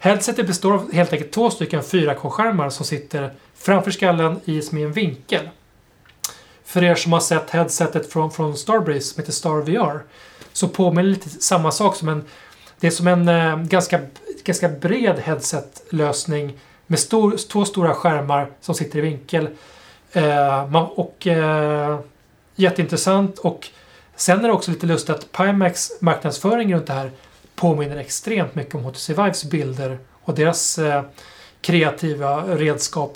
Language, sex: Swedish, male